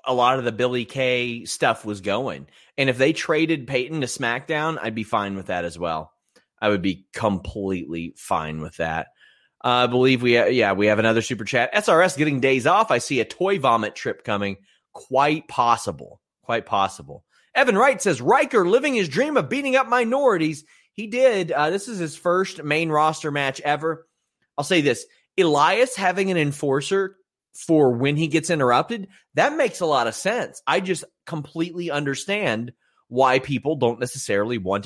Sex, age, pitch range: male, 30-49, 120-170 Hz